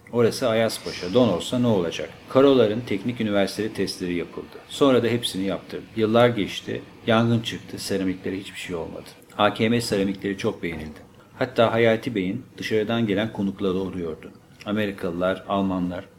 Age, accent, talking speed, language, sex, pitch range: 50-69, Turkish, 135 wpm, English, male, 95-115 Hz